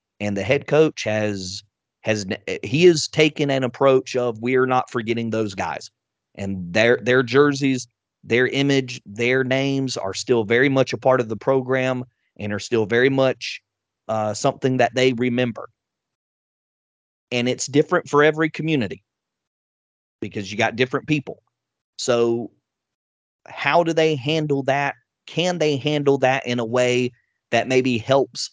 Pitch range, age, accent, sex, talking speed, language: 115-140 Hz, 30-49, American, male, 150 wpm, English